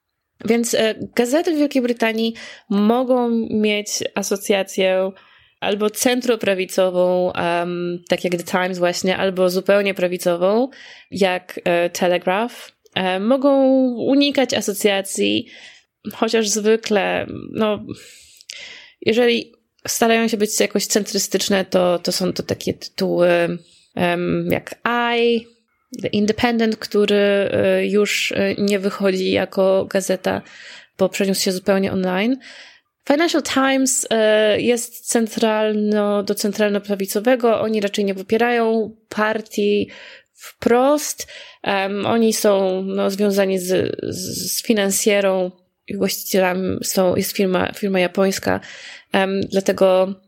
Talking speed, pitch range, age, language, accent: 100 wpm, 190-230 Hz, 20-39, Polish, native